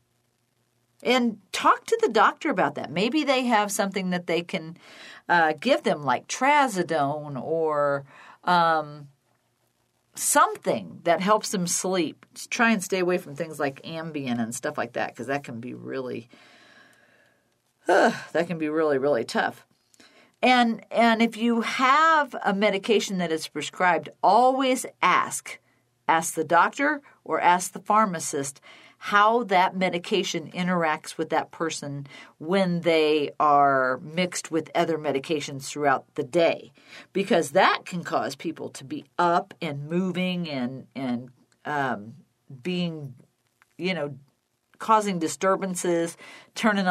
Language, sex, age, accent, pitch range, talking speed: English, female, 50-69, American, 140-200 Hz, 135 wpm